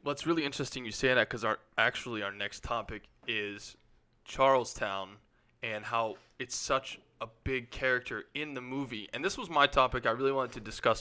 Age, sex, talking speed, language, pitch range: 20-39, male, 185 wpm, English, 110-135 Hz